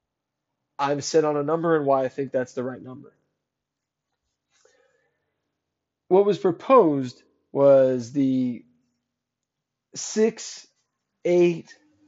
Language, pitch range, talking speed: English, 130-165 Hz, 105 wpm